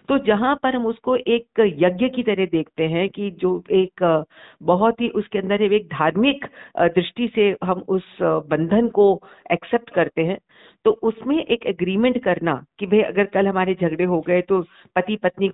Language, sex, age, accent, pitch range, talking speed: Hindi, female, 50-69, native, 175-220 Hz, 175 wpm